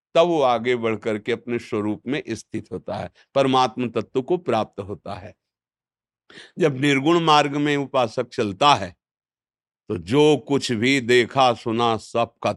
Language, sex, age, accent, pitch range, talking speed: Hindi, male, 50-69, native, 115-150 Hz, 155 wpm